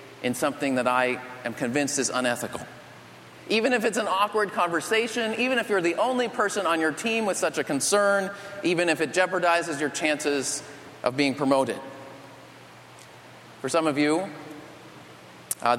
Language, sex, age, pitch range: English, male, 30-49, 140-195 Hz